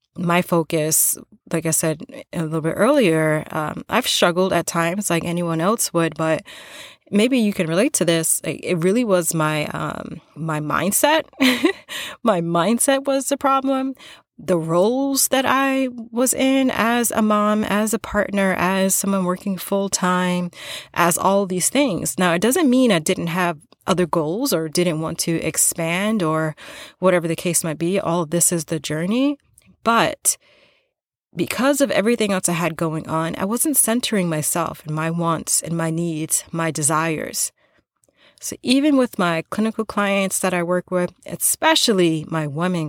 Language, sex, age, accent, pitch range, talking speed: English, female, 30-49, American, 165-220 Hz, 165 wpm